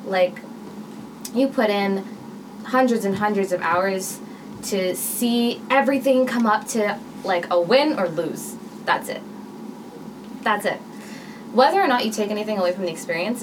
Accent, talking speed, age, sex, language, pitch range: American, 150 wpm, 20-39, female, English, 180-220 Hz